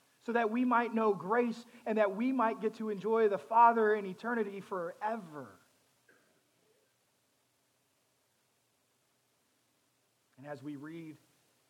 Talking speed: 115 wpm